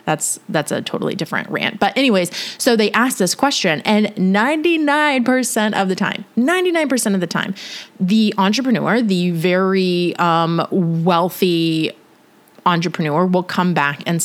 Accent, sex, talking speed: American, female, 140 wpm